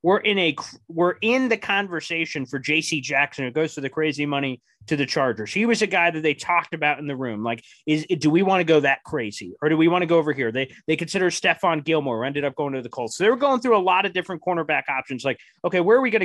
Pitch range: 145-185 Hz